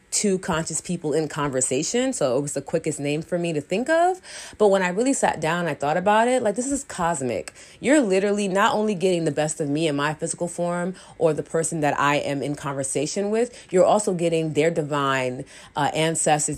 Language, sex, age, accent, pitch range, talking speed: English, female, 30-49, American, 150-195 Hz, 220 wpm